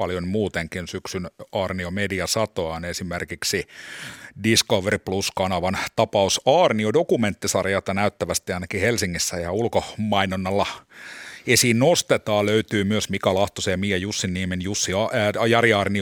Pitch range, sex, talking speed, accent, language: 95-110 Hz, male, 95 wpm, native, Finnish